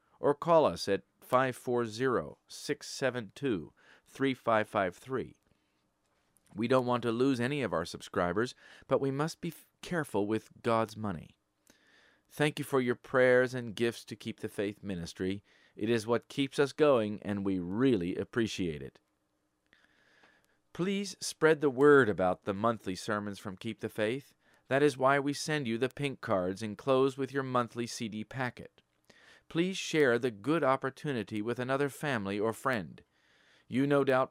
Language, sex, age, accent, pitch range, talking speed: English, male, 40-59, American, 105-140 Hz, 150 wpm